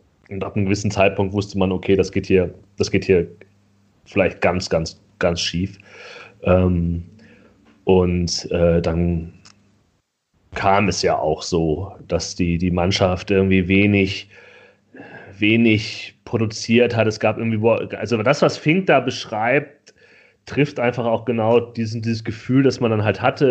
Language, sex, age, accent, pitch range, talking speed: German, male, 30-49, German, 100-125 Hz, 145 wpm